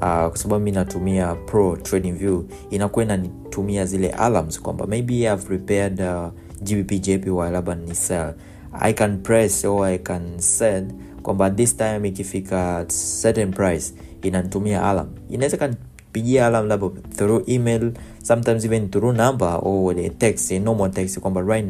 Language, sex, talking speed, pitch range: Swahili, male, 150 wpm, 95-110 Hz